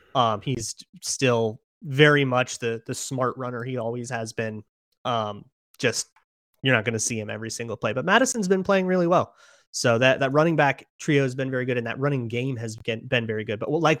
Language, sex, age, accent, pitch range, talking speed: English, male, 30-49, American, 115-140 Hz, 215 wpm